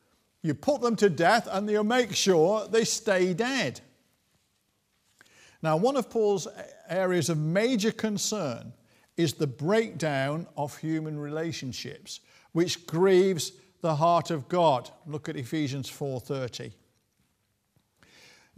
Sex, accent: male, British